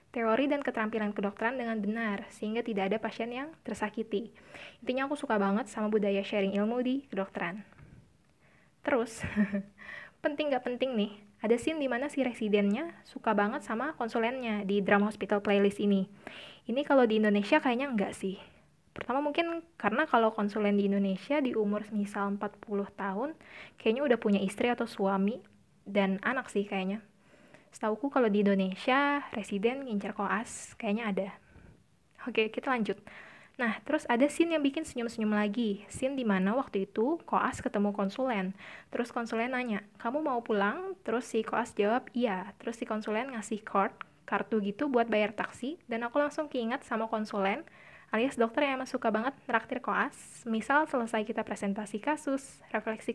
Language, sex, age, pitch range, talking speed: Indonesian, female, 20-39, 205-255 Hz, 155 wpm